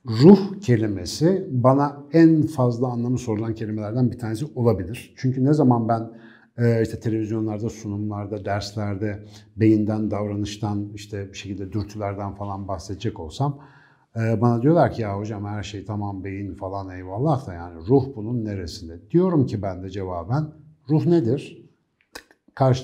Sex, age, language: male, 60-79, Turkish